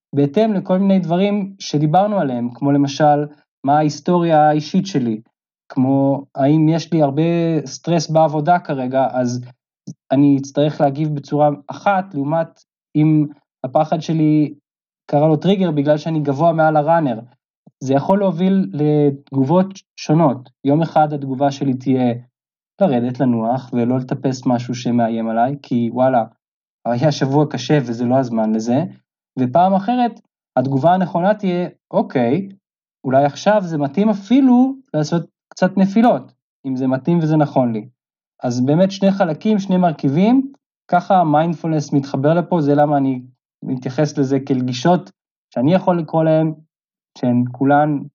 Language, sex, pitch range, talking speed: Hebrew, male, 135-175 Hz, 130 wpm